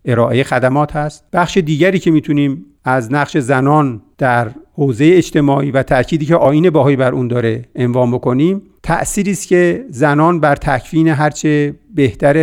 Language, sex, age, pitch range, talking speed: Persian, male, 50-69, 120-150 Hz, 145 wpm